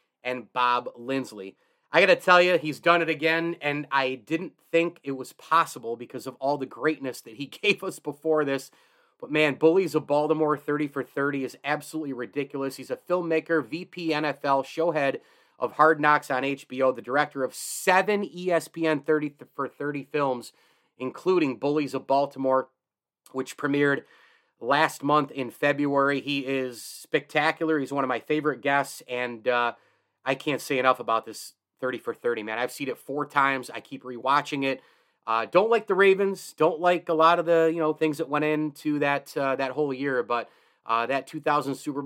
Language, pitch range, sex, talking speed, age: English, 130-155 Hz, male, 185 wpm, 30-49